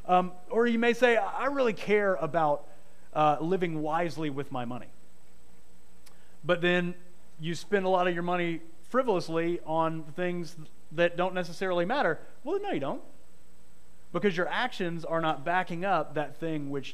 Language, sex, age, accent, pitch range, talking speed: English, male, 30-49, American, 140-180 Hz, 160 wpm